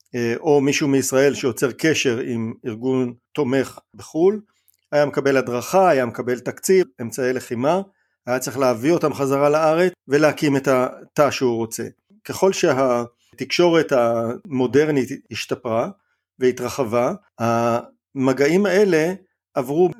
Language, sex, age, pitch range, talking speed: Hebrew, male, 50-69, 125-160 Hz, 110 wpm